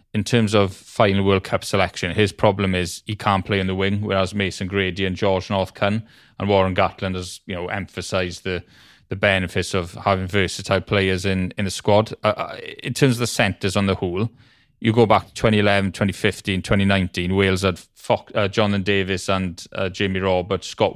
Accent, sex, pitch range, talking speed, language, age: British, male, 95-105 Hz, 200 wpm, English, 20-39